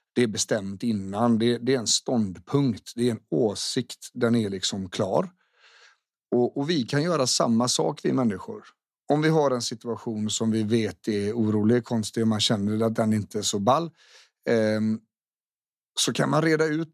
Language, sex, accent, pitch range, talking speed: English, male, Swedish, 110-135 Hz, 180 wpm